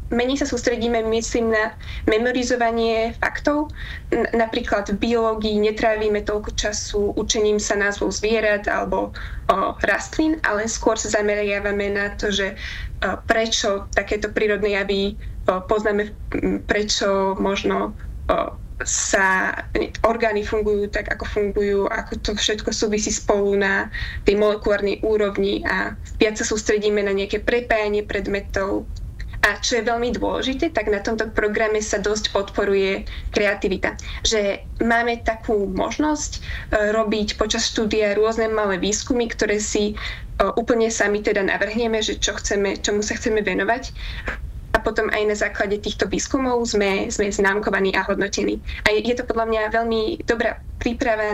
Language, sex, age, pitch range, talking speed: Slovak, female, 20-39, 205-230 Hz, 140 wpm